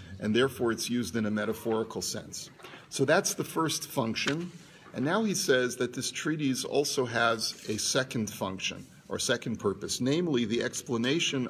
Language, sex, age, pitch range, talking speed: English, male, 40-59, 110-135 Hz, 160 wpm